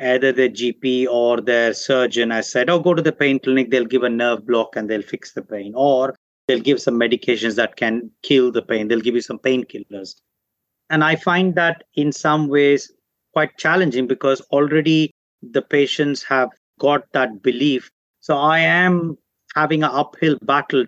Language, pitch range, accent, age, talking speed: English, 125-155 Hz, Indian, 30-49, 180 wpm